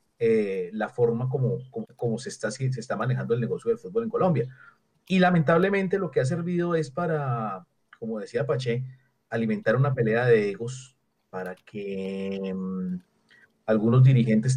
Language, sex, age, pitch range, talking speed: Spanish, male, 40-59, 115-150 Hz, 160 wpm